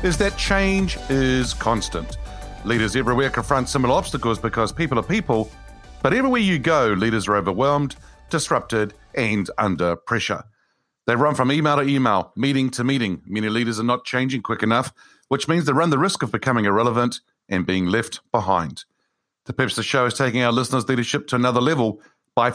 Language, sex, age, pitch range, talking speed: English, male, 50-69, 115-145 Hz, 180 wpm